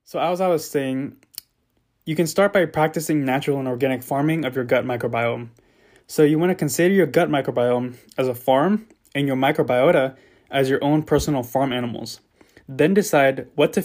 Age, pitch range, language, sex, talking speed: 20-39, 130-155 Hz, English, male, 180 wpm